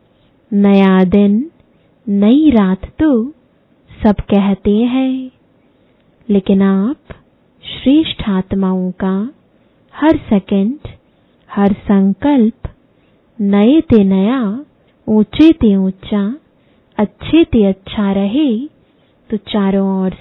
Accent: Indian